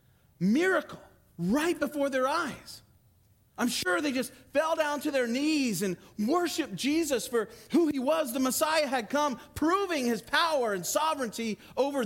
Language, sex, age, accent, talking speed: English, male, 40-59, American, 155 wpm